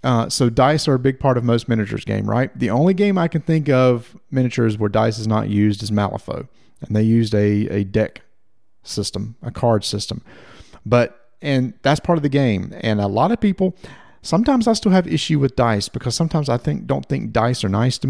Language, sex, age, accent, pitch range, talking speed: English, male, 40-59, American, 110-140 Hz, 220 wpm